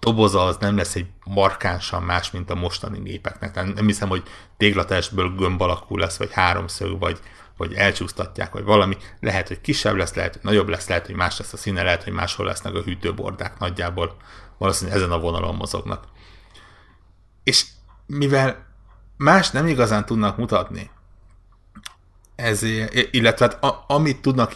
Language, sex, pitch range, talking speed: Hungarian, male, 90-105 Hz, 150 wpm